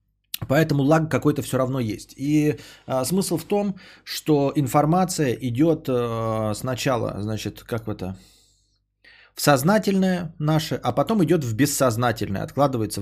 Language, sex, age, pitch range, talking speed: Bulgarian, male, 30-49, 110-155 Hz, 135 wpm